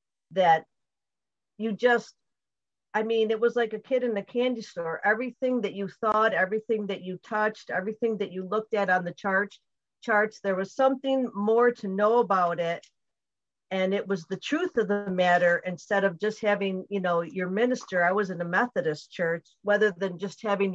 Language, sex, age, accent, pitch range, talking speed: English, female, 50-69, American, 175-215 Hz, 190 wpm